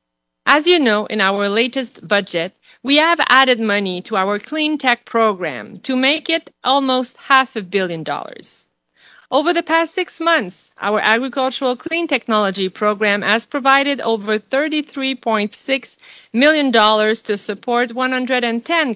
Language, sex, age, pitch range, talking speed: English, female, 40-59, 200-265 Hz, 135 wpm